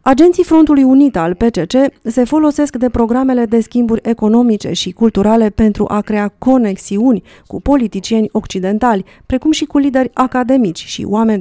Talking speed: 145 wpm